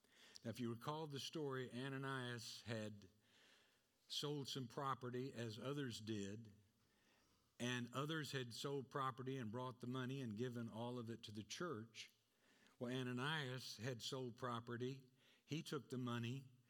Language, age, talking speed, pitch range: English, 60-79, 145 wpm, 115-150 Hz